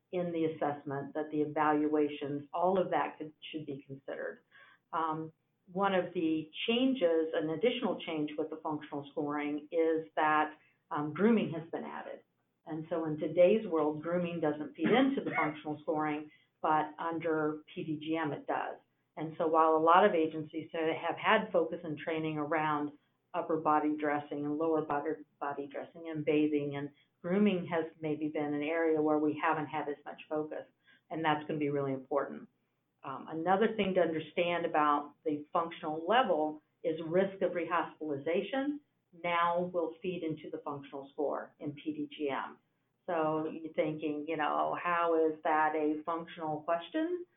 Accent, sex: American, female